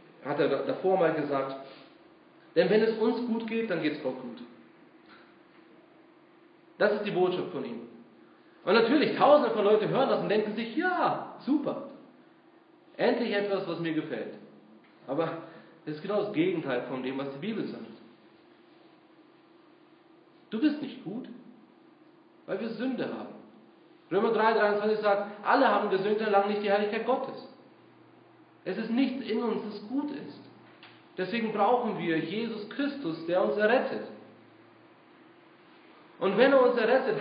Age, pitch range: 40-59, 195-285 Hz